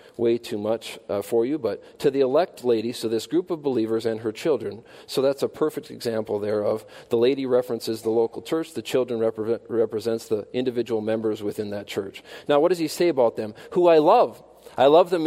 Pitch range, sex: 120-180 Hz, male